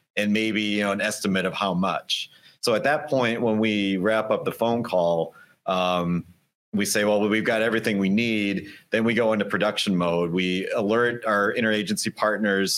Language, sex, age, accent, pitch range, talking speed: English, male, 30-49, American, 95-110 Hz, 190 wpm